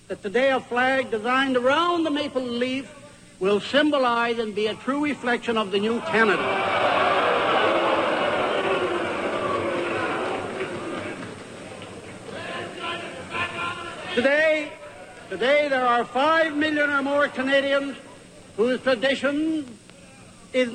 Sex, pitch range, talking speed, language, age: male, 235-285 Hz, 95 wpm, English, 70-89